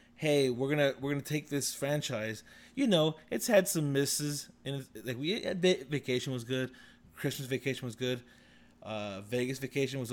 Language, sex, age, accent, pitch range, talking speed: English, male, 20-39, American, 115-170 Hz, 180 wpm